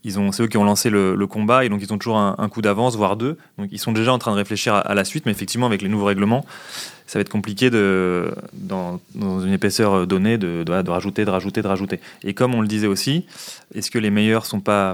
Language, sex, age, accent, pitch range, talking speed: French, male, 30-49, French, 95-115 Hz, 280 wpm